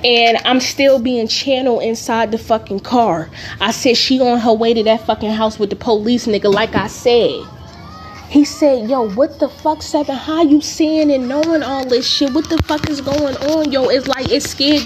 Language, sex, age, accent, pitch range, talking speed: English, female, 20-39, American, 210-255 Hz, 210 wpm